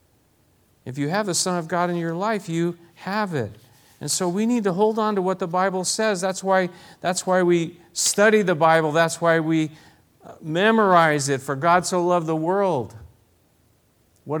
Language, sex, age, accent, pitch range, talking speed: English, male, 50-69, American, 145-195 Hz, 185 wpm